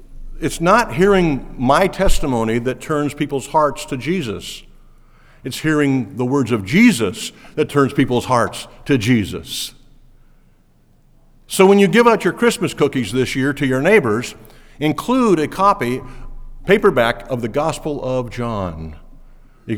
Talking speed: 140 wpm